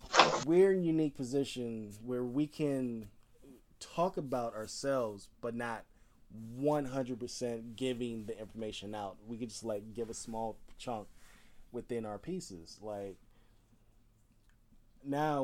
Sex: male